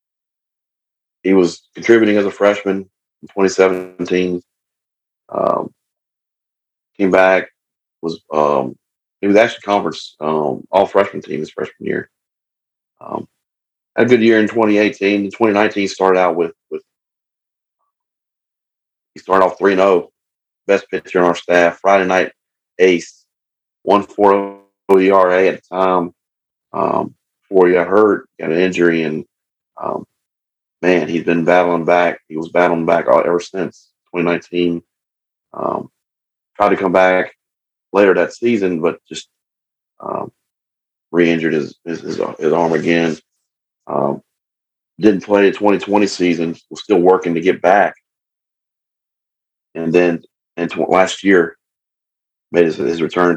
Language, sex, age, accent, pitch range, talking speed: English, male, 30-49, American, 85-100 Hz, 135 wpm